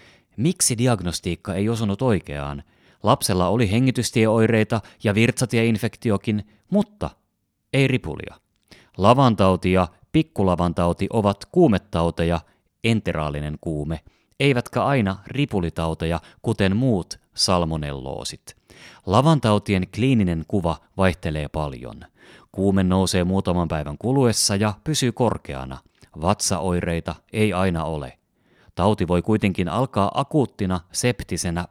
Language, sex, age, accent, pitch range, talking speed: Finnish, male, 30-49, native, 85-115 Hz, 90 wpm